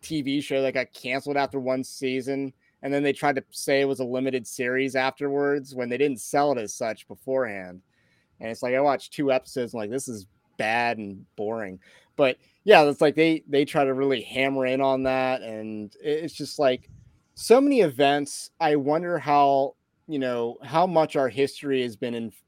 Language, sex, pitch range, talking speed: English, male, 125-155 Hz, 190 wpm